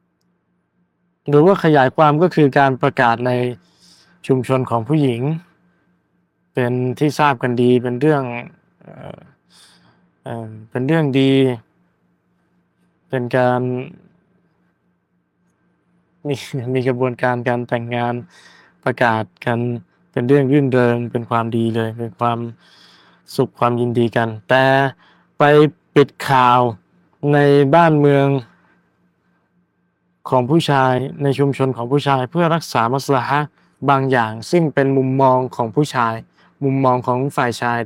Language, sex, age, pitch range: Thai, male, 20-39, 120-145 Hz